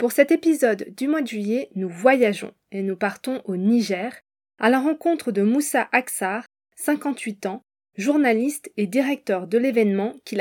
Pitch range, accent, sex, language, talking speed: 205-260 Hz, French, female, French, 160 wpm